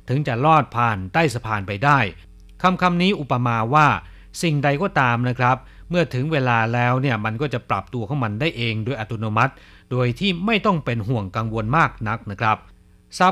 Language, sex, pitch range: Chinese, male, 110-160 Hz